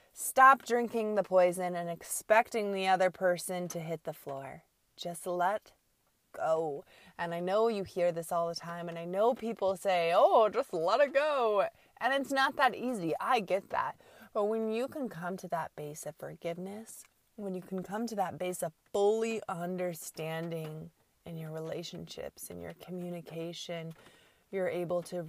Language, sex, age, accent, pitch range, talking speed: English, female, 20-39, American, 155-185 Hz, 170 wpm